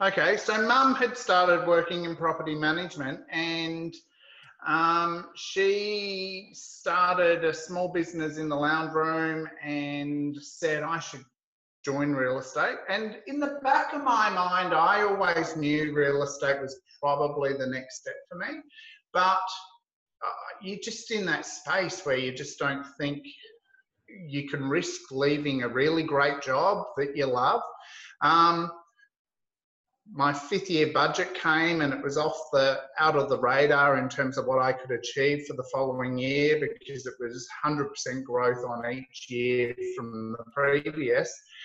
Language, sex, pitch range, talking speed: English, male, 140-185 Hz, 150 wpm